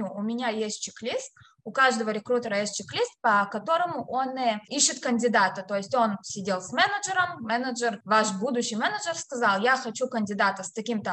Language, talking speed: Russian, 165 wpm